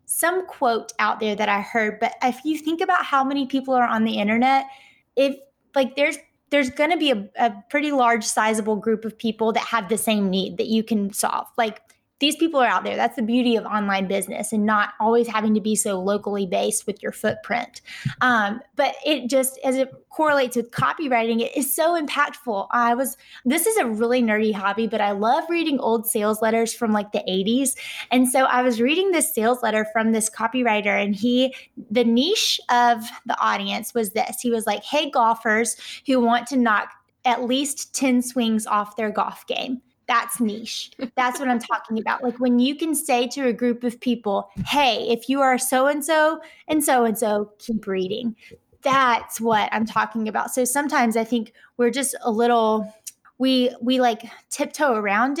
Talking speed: 195 wpm